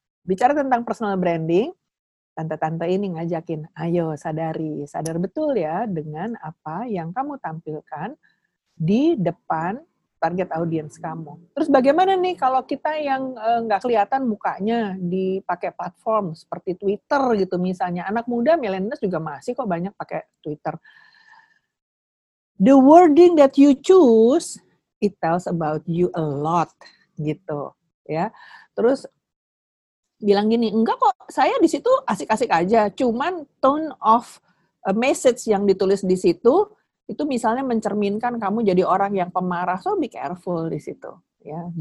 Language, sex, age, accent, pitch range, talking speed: Indonesian, female, 50-69, native, 170-240 Hz, 130 wpm